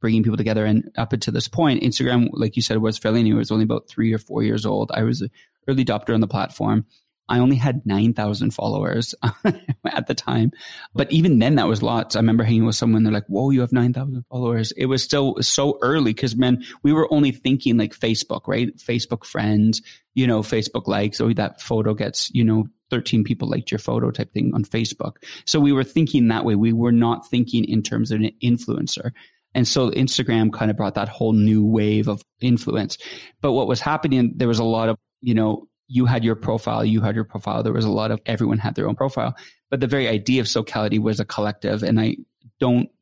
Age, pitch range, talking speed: 20-39, 110-130 Hz, 225 wpm